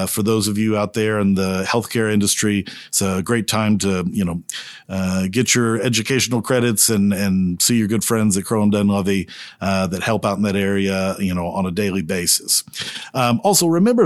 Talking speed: 210 wpm